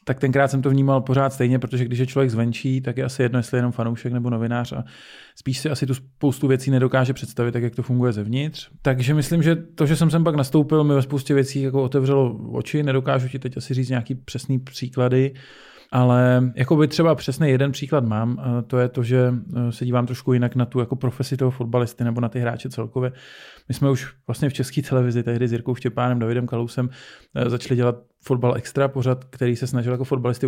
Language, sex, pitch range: Czech, male, 120-135 Hz